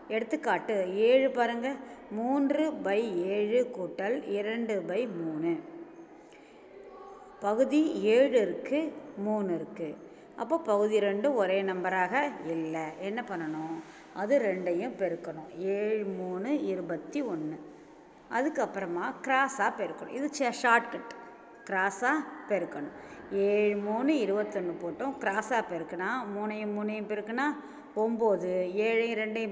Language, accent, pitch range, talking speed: Tamil, native, 185-265 Hz, 100 wpm